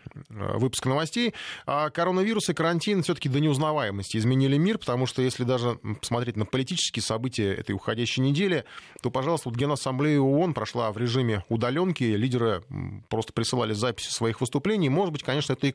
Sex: male